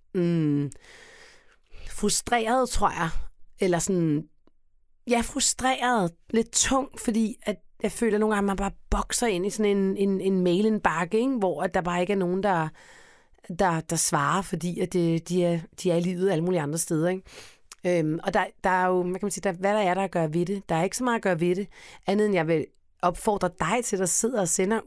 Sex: female